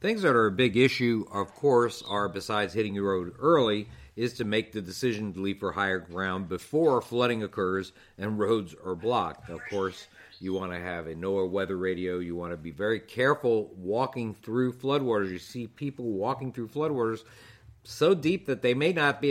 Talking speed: 195 wpm